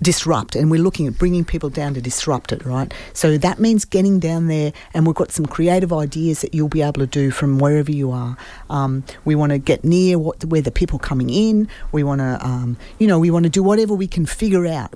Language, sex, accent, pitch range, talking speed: English, female, Australian, 140-180 Hz, 250 wpm